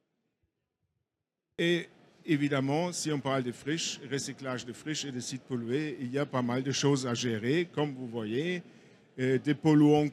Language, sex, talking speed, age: French, male, 165 wpm, 50-69